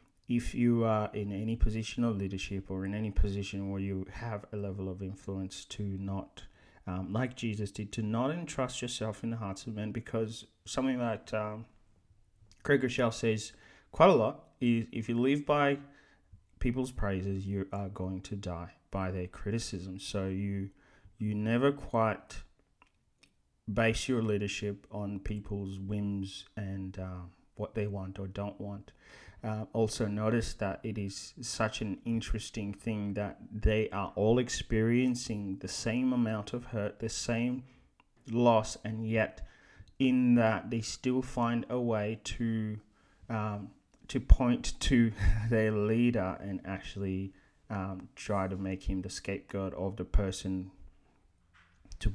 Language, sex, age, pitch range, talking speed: English, male, 30-49, 95-115 Hz, 150 wpm